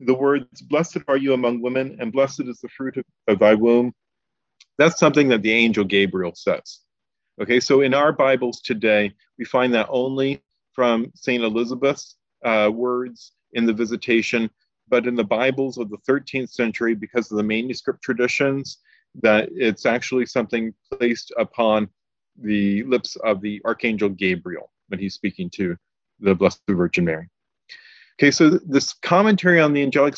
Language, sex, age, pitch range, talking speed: English, male, 40-59, 110-135 Hz, 160 wpm